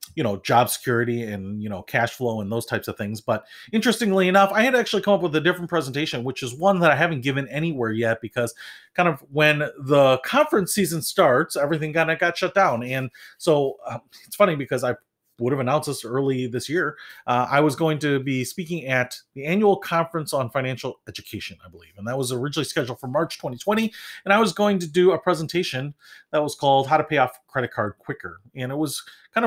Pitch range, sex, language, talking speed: 130-175 Hz, male, English, 220 wpm